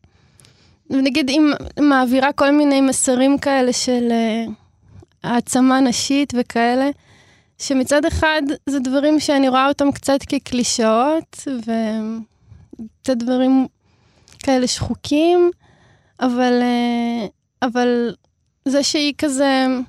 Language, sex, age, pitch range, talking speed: Hebrew, female, 20-39, 245-295 Hz, 95 wpm